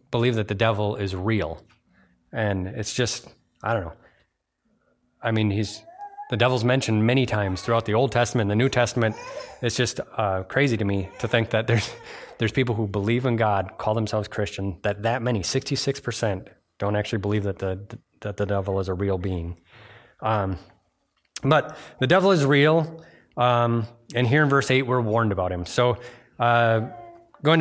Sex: male